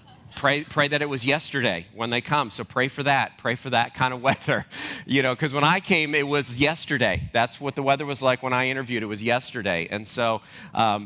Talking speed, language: 235 wpm, English